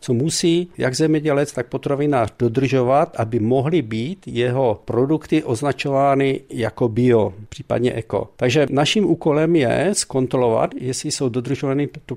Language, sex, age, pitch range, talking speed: Czech, male, 50-69, 120-145 Hz, 130 wpm